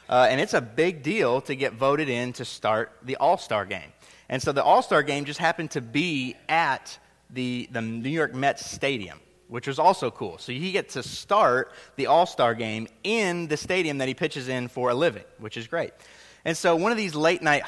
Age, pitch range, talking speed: 30-49, 125-165 Hz, 210 wpm